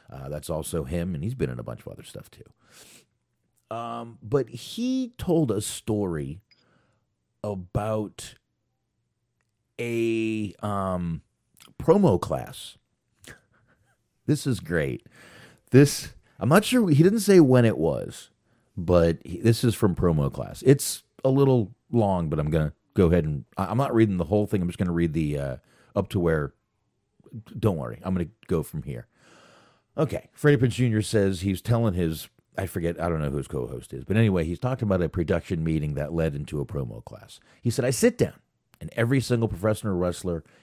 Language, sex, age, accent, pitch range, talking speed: English, male, 40-59, American, 80-120 Hz, 180 wpm